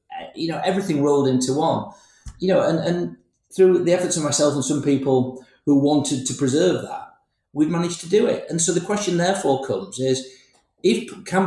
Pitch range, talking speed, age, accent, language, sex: 130-175 Hz, 195 wpm, 40-59, British, English, male